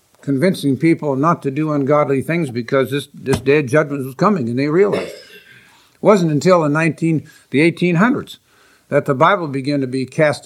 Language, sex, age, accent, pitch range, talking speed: English, male, 60-79, American, 140-185 Hz, 180 wpm